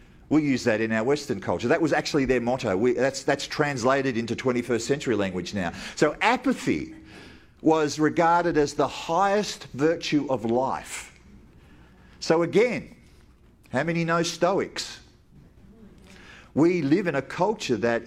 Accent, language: Australian, English